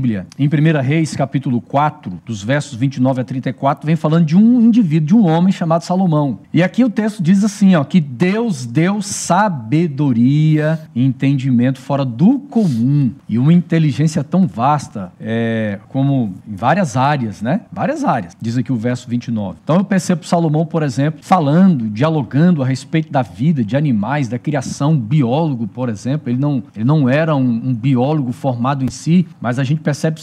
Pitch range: 135-185 Hz